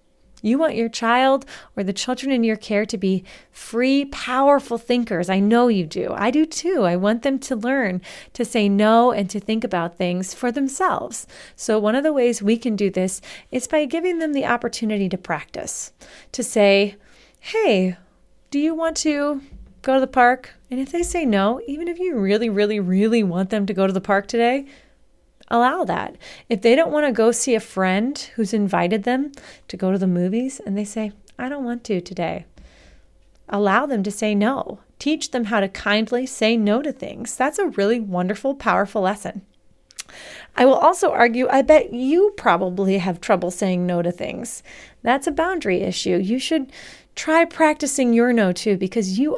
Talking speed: 190 wpm